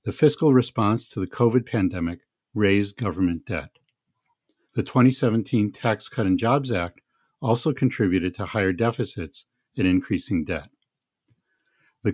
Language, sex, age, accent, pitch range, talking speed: English, male, 60-79, American, 95-130 Hz, 130 wpm